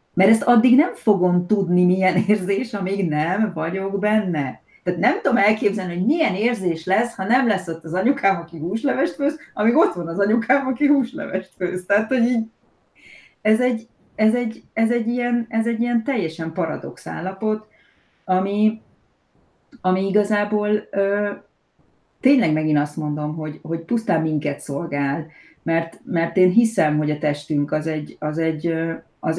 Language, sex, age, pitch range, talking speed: Hungarian, female, 30-49, 150-205 Hz, 160 wpm